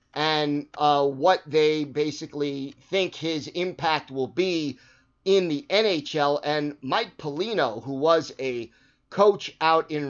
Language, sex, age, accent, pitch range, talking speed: English, male, 30-49, American, 145-175 Hz, 145 wpm